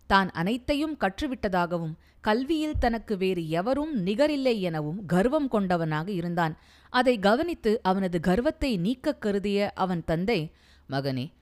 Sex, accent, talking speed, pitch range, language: female, native, 105 wpm, 160-225 Hz, Tamil